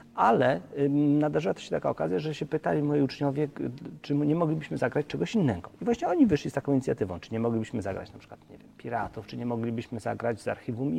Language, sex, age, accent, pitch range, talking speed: Romanian, male, 40-59, Polish, 115-155 Hz, 190 wpm